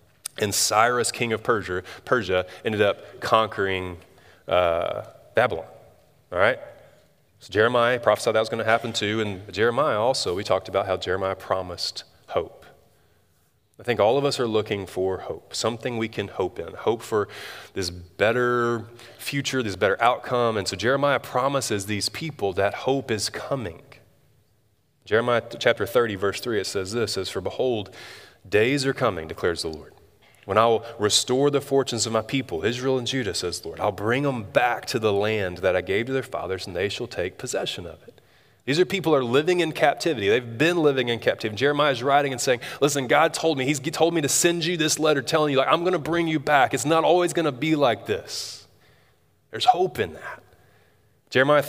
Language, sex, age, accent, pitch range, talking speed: English, male, 30-49, American, 105-150 Hz, 195 wpm